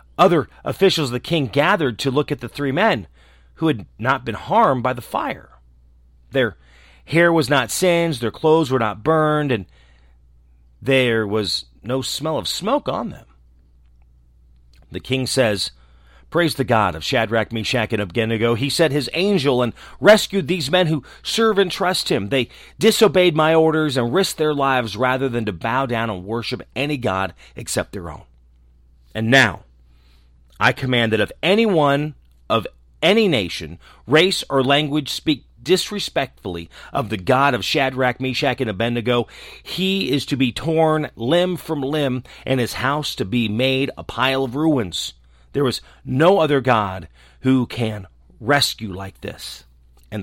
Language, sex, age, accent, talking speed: English, male, 40-59, American, 160 wpm